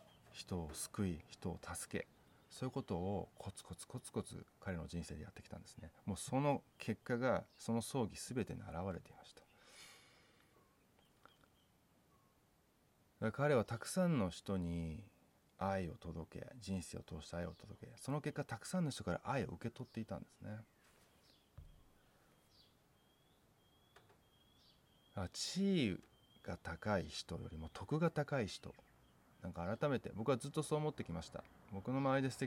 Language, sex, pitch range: Japanese, male, 85-120 Hz